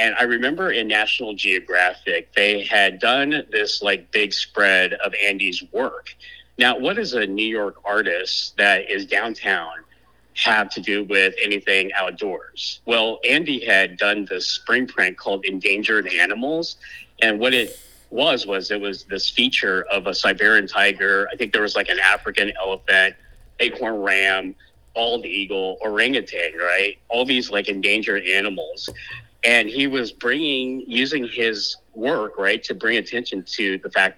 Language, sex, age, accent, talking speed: English, male, 30-49, American, 155 wpm